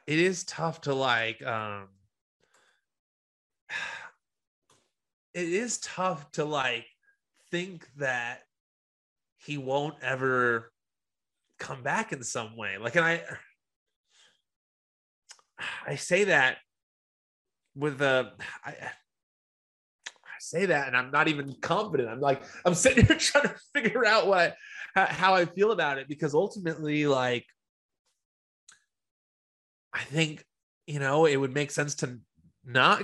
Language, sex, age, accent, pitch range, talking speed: English, male, 30-49, American, 135-195 Hz, 120 wpm